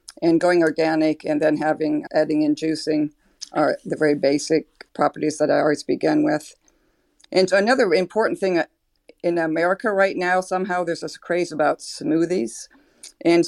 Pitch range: 155-185 Hz